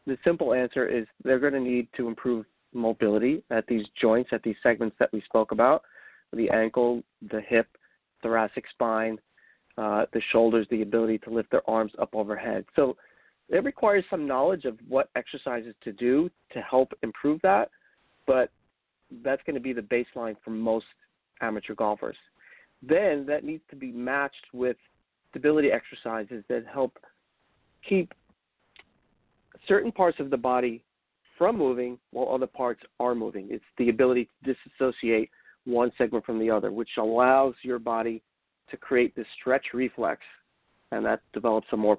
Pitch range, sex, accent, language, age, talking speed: 115-135 Hz, male, American, English, 40-59, 160 wpm